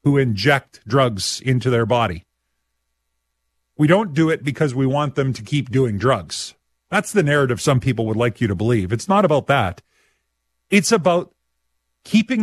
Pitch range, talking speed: 120-160 Hz, 170 wpm